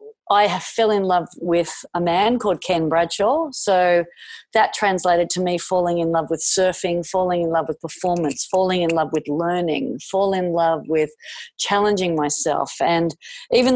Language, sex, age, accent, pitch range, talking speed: English, female, 40-59, Australian, 170-205 Hz, 165 wpm